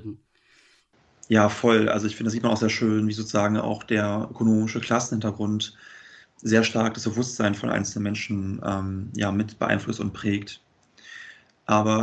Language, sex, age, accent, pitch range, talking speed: German, male, 30-49, German, 105-115 Hz, 155 wpm